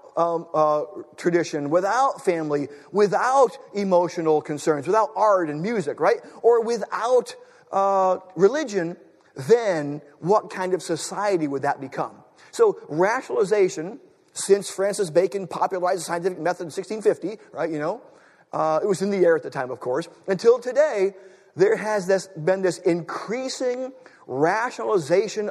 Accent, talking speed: American, 140 wpm